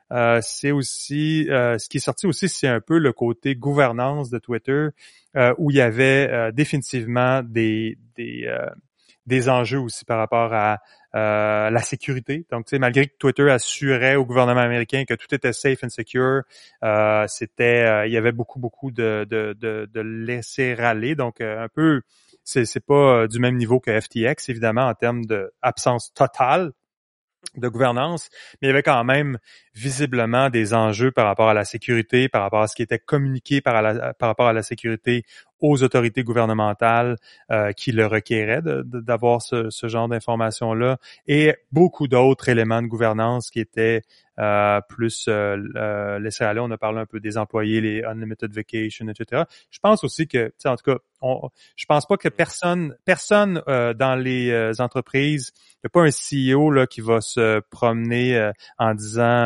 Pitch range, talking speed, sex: 110-135 Hz, 185 wpm, male